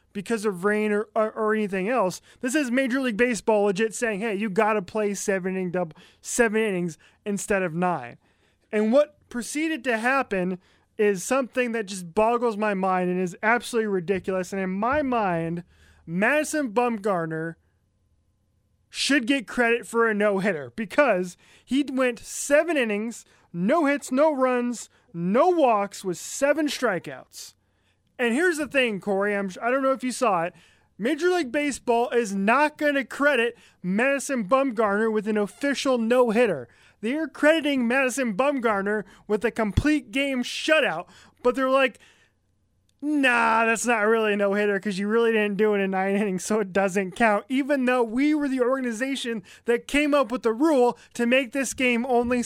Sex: male